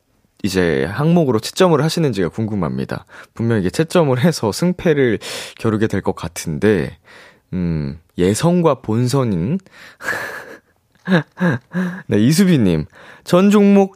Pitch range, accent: 95-160 Hz, native